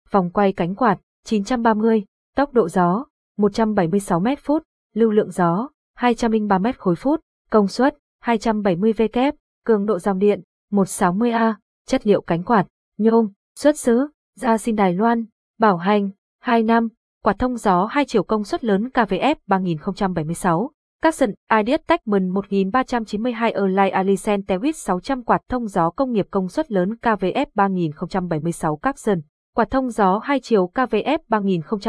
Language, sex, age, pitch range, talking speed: Vietnamese, female, 20-39, 190-240 Hz, 140 wpm